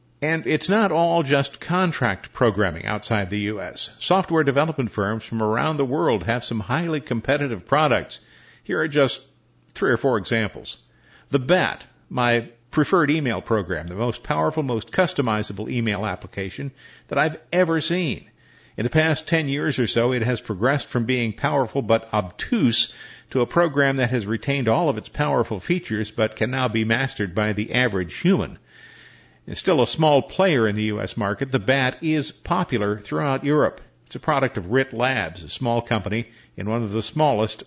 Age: 50-69